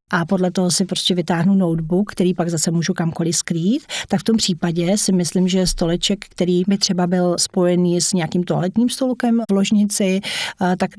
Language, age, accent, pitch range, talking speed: Czech, 40-59, native, 185-220 Hz, 180 wpm